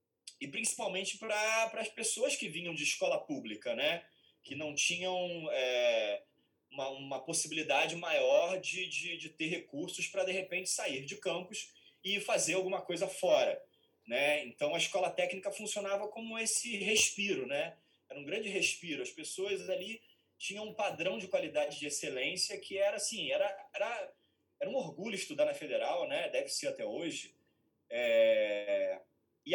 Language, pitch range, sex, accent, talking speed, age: Portuguese, 160-265 Hz, male, Brazilian, 155 wpm, 20-39